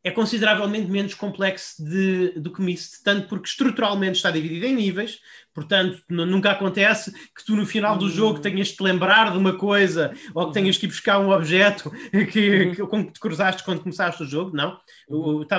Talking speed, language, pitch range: 195 wpm, Portuguese, 165-205 Hz